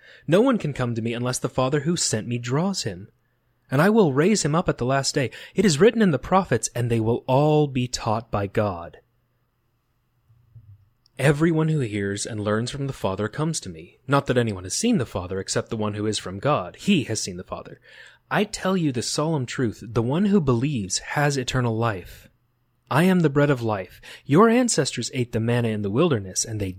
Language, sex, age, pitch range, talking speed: English, male, 30-49, 110-145 Hz, 215 wpm